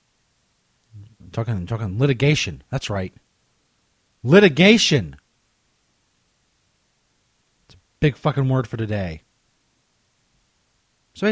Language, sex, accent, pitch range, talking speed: English, male, American, 105-145 Hz, 75 wpm